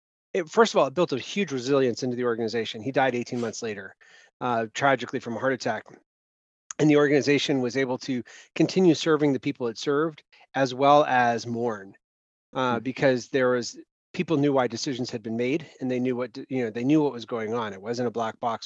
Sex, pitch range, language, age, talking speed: male, 125-145 Hz, English, 30-49, 215 wpm